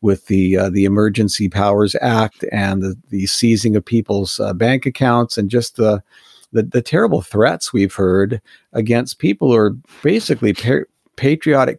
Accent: American